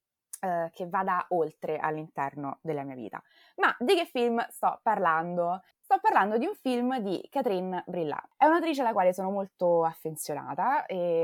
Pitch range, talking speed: 160-210 Hz, 160 wpm